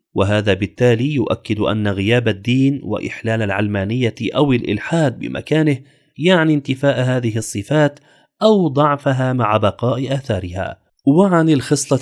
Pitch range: 105-140 Hz